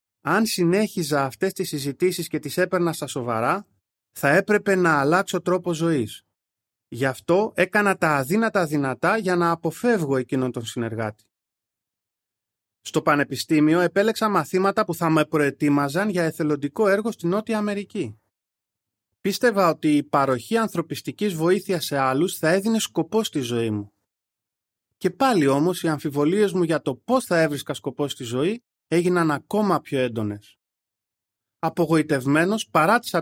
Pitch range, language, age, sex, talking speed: 130-185 Hz, Greek, 30-49, male, 135 wpm